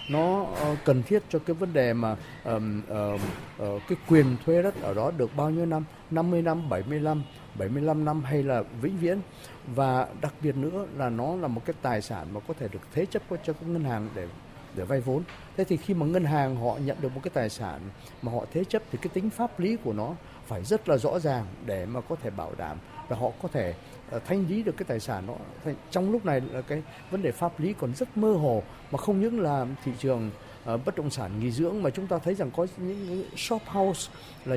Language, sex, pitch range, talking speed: Vietnamese, male, 125-185 Hz, 235 wpm